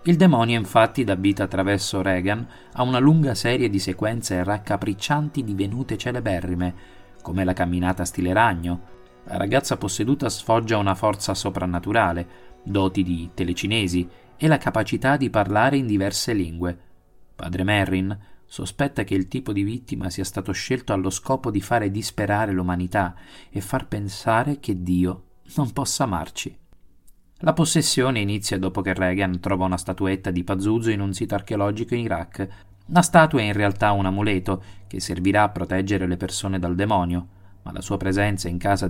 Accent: native